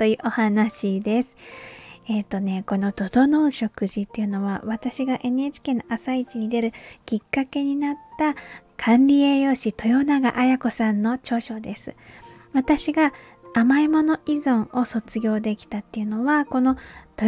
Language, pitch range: Japanese, 215-270 Hz